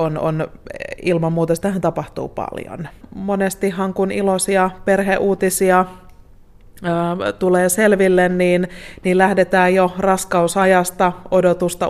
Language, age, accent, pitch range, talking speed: Finnish, 20-39, native, 165-185 Hz, 105 wpm